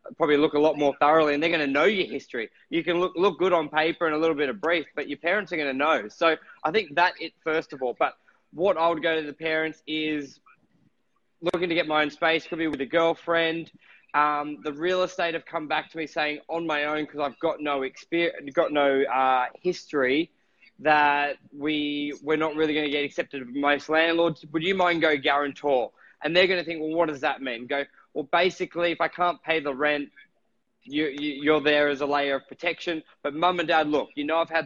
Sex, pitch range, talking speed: male, 145-165 Hz, 235 wpm